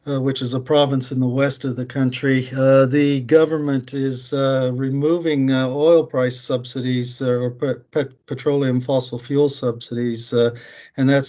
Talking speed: 165 wpm